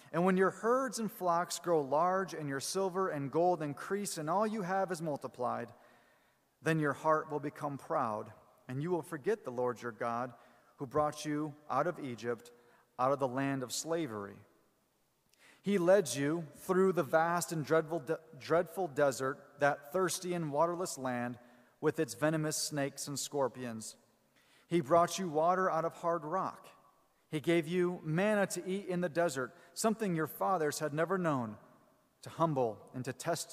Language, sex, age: English, male, 40-59